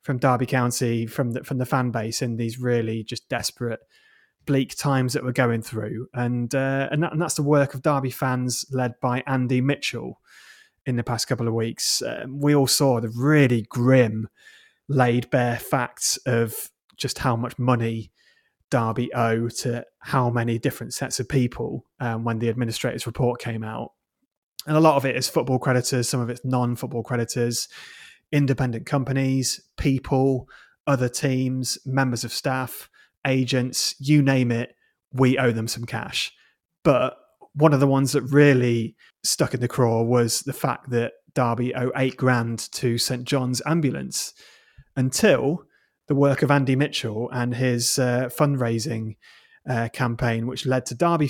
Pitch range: 120-135 Hz